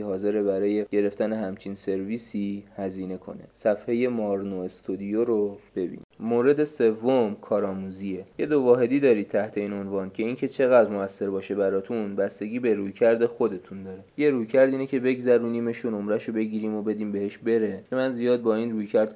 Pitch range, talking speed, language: 100-115 Hz, 155 wpm, Persian